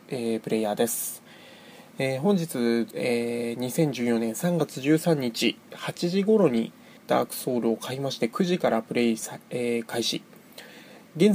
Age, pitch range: 20-39, 115-175 Hz